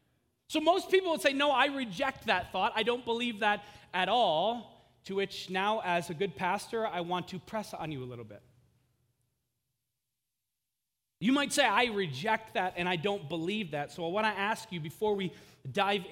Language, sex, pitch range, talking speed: English, male, 155-240 Hz, 195 wpm